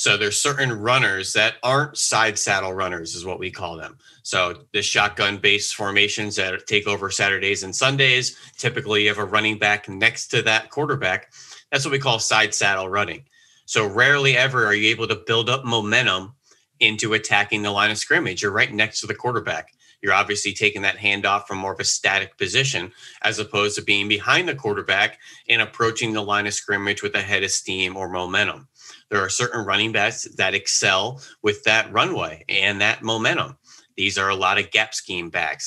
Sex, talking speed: male, 195 wpm